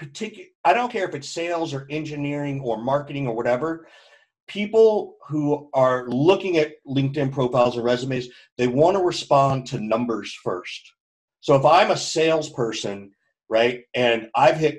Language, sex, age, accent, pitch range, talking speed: English, male, 40-59, American, 135-180 Hz, 150 wpm